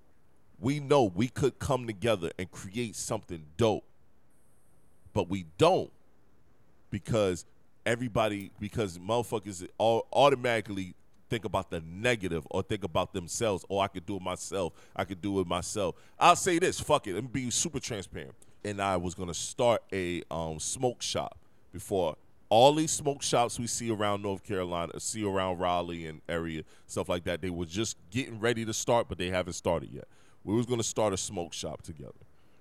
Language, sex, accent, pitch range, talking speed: English, male, American, 85-115 Hz, 175 wpm